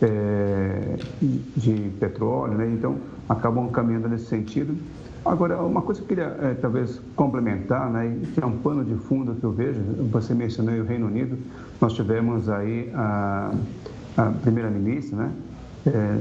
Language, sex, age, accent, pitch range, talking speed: Portuguese, male, 60-79, Brazilian, 115-140 Hz, 155 wpm